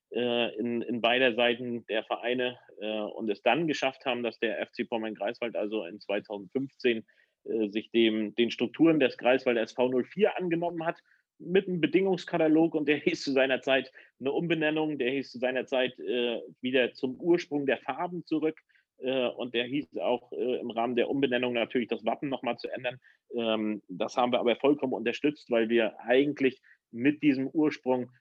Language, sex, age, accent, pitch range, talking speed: German, male, 40-59, German, 110-130 Hz, 170 wpm